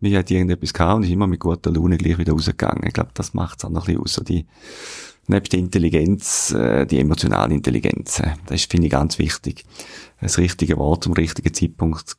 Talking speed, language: 210 wpm, German